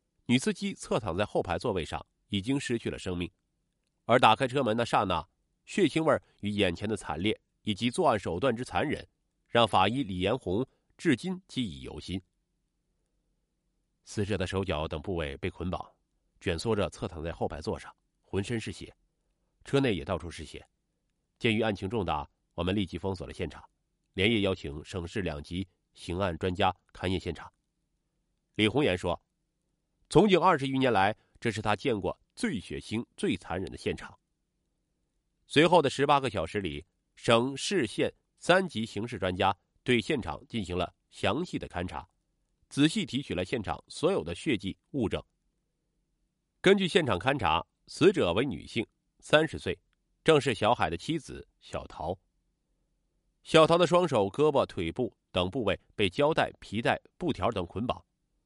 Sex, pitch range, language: male, 90-140 Hz, Chinese